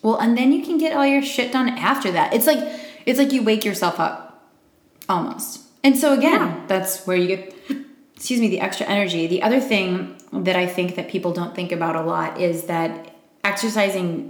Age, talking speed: 20-39, 205 wpm